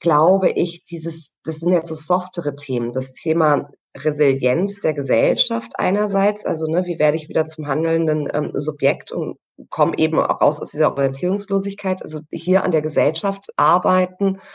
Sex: female